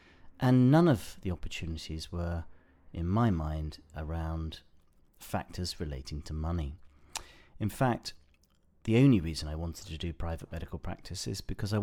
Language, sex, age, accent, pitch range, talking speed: English, male, 40-59, British, 80-100 Hz, 145 wpm